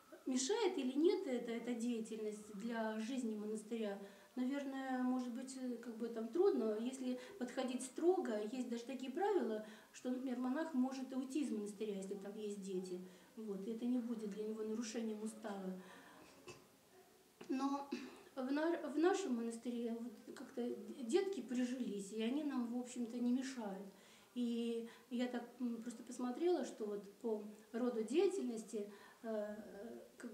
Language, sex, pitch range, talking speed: Russian, female, 220-265 Hz, 140 wpm